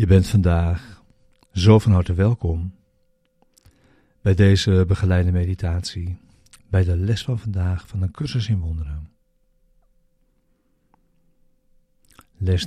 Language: Dutch